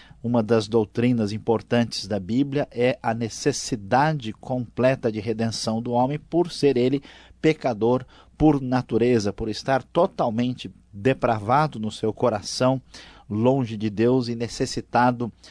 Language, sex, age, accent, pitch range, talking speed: Portuguese, male, 50-69, Brazilian, 115-145 Hz, 125 wpm